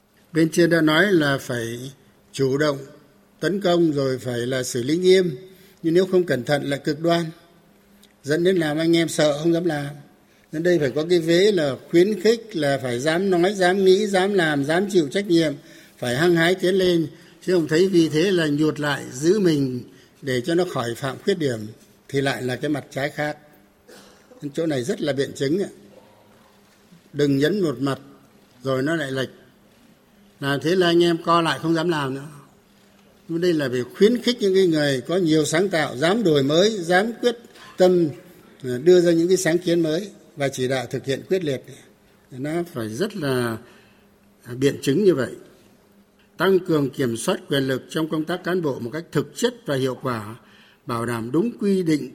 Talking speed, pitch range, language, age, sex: 195 wpm, 140-180 Hz, Vietnamese, 60-79, male